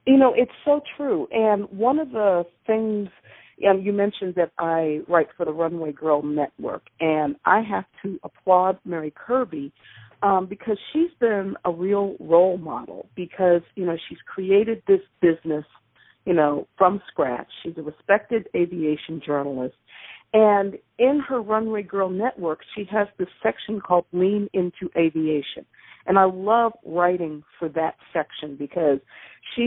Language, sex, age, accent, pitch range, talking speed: English, female, 50-69, American, 160-210 Hz, 155 wpm